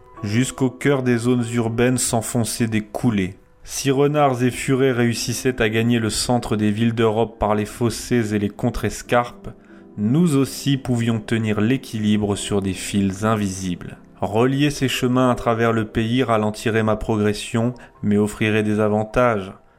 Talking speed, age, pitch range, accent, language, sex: 150 wpm, 30-49, 105-125 Hz, French, French, male